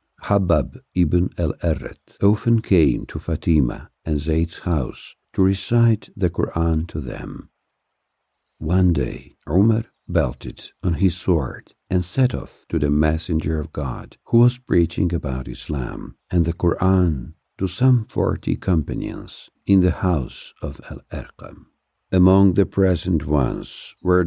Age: 60-79